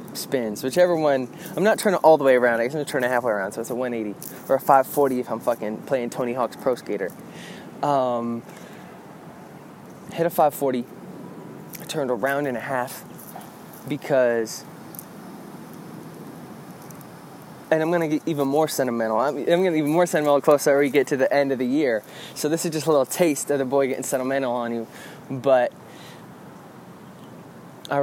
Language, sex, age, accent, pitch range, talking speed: English, male, 20-39, American, 115-140 Hz, 185 wpm